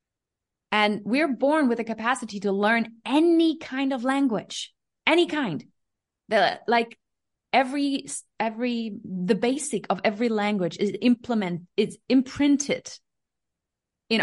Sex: female